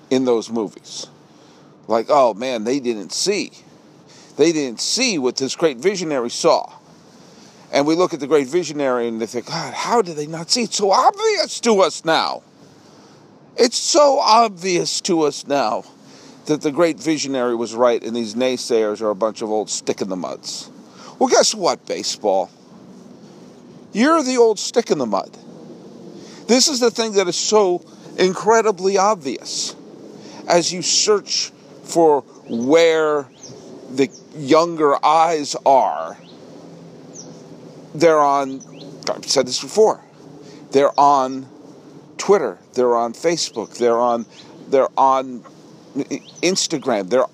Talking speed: 130 wpm